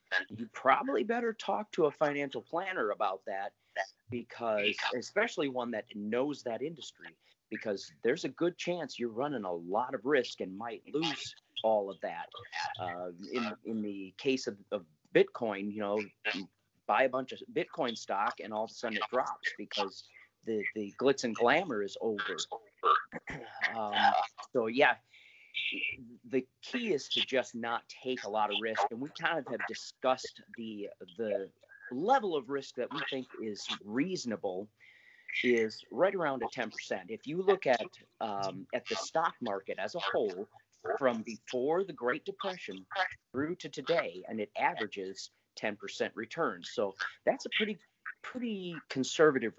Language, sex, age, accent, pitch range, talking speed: English, male, 40-59, American, 110-175 Hz, 160 wpm